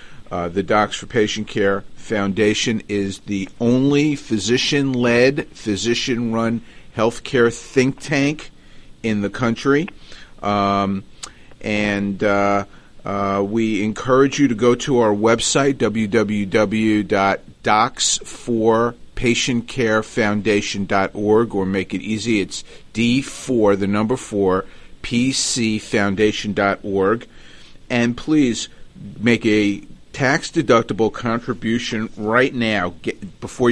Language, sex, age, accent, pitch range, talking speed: English, male, 40-59, American, 100-125 Hz, 90 wpm